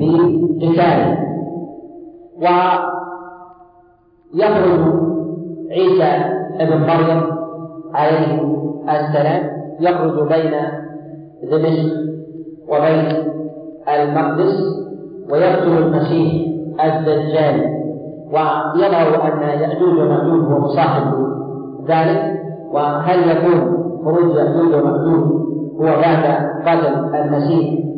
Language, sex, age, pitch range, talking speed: Arabic, male, 50-69, 155-170 Hz, 65 wpm